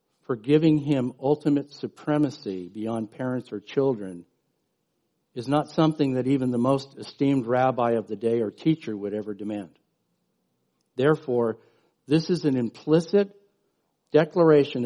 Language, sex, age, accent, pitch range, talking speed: English, male, 50-69, American, 115-155 Hz, 130 wpm